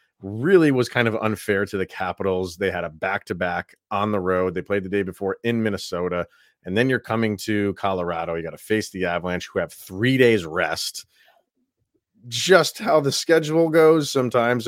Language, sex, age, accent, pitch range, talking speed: English, male, 30-49, American, 95-130 Hz, 185 wpm